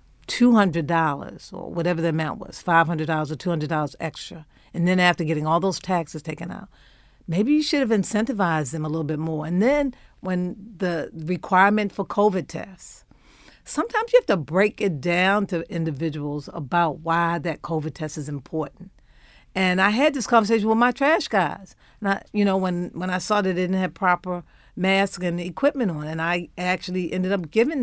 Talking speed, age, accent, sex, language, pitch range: 175 wpm, 50-69, American, female, English, 170-210 Hz